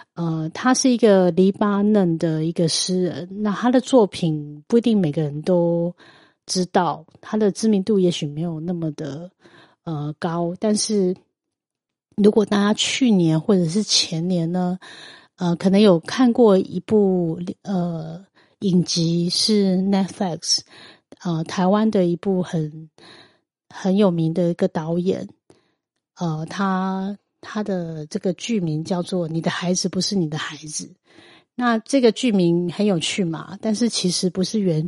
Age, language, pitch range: 30-49, Chinese, 170-210 Hz